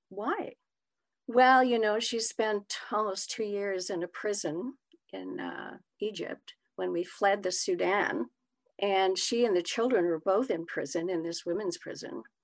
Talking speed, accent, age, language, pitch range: 160 wpm, American, 50-69, English, 205-280 Hz